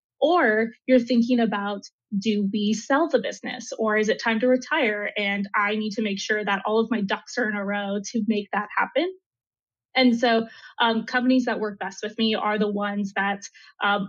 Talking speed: 205 wpm